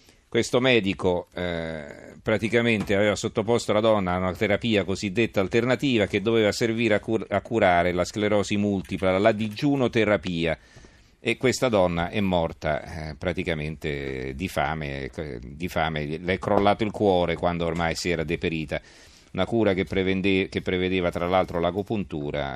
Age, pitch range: 40-59, 85-105 Hz